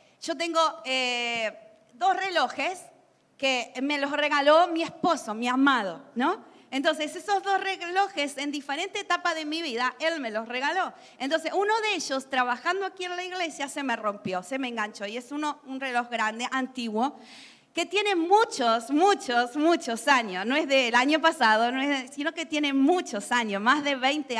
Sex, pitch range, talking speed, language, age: female, 245-335 Hz, 175 wpm, English, 40-59